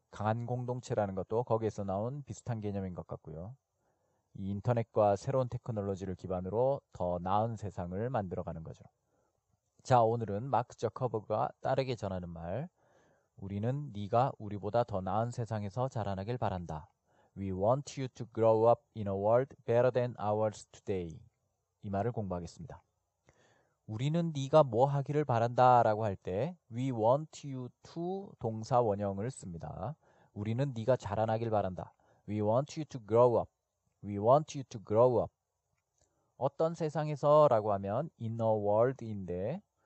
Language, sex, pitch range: Korean, male, 105-130 Hz